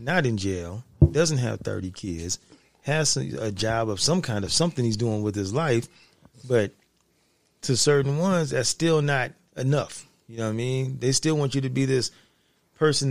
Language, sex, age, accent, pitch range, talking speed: English, male, 30-49, American, 110-140 Hz, 190 wpm